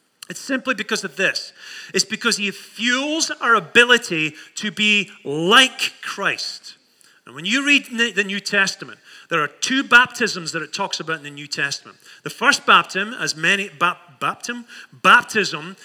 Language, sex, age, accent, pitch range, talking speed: English, male, 30-49, British, 180-240 Hz, 150 wpm